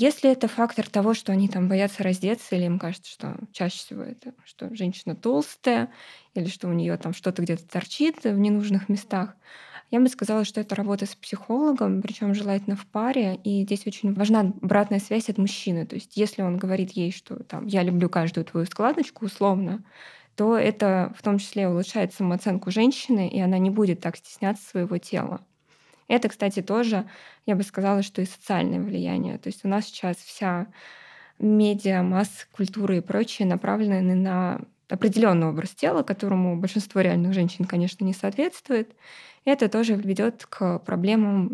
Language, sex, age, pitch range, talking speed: Russian, female, 20-39, 185-220 Hz, 170 wpm